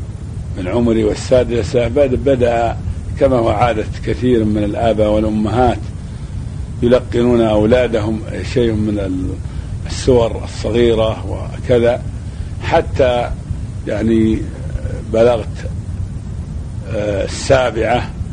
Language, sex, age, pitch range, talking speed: Arabic, male, 50-69, 100-120 Hz, 70 wpm